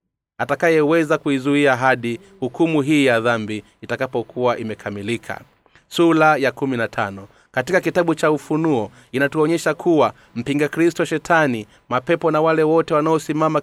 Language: Swahili